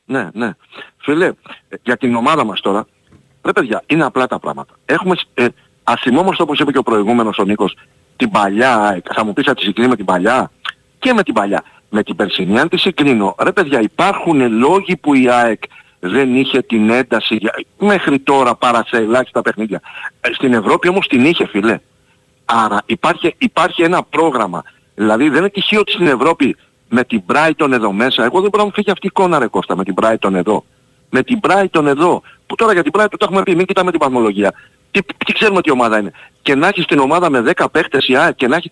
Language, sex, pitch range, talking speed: Greek, male, 115-190 Hz, 205 wpm